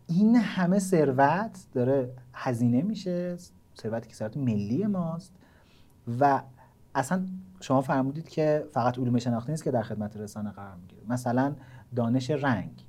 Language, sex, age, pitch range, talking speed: Persian, male, 40-59, 120-175 Hz, 135 wpm